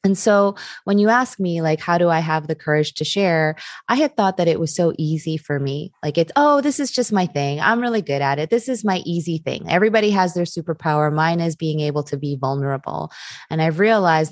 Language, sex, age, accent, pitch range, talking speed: English, female, 20-39, American, 155-200 Hz, 240 wpm